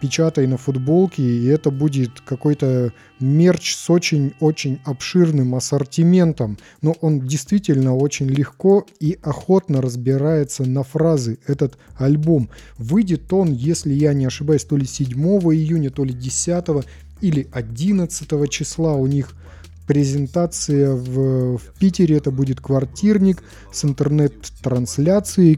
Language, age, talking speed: Russian, 20-39, 120 wpm